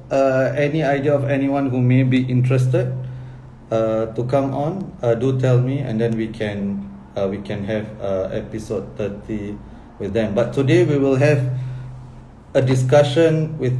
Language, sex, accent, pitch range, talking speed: English, male, Malaysian, 110-130 Hz, 165 wpm